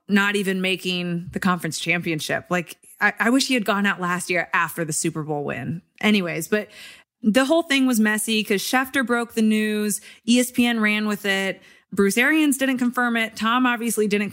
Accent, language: American, English